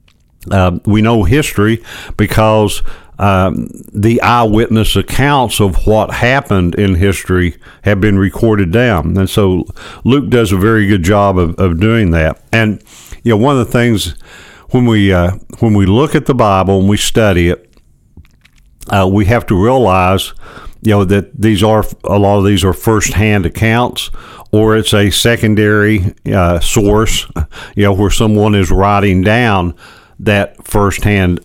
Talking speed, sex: 160 wpm, male